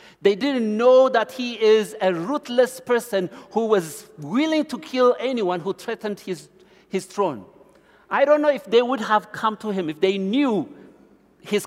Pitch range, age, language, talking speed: 175-225 Hz, 60-79, English, 175 wpm